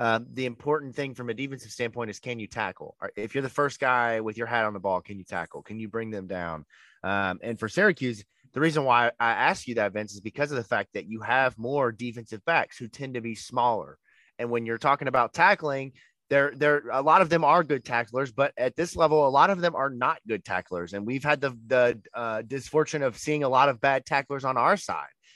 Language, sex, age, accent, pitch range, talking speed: English, male, 30-49, American, 115-140 Hz, 245 wpm